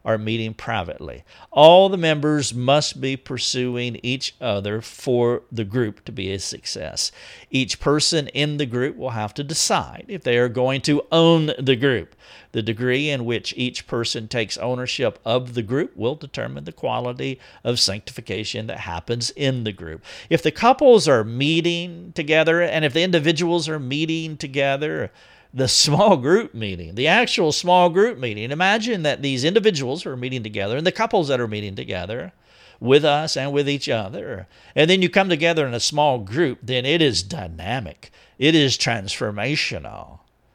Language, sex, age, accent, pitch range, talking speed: English, male, 50-69, American, 120-155 Hz, 170 wpm